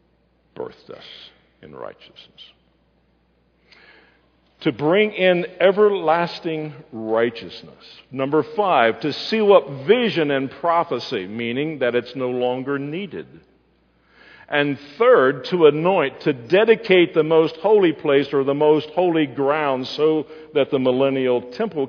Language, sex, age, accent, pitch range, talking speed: English, male, 50-69, American, 125-170 Hz, 120 wpm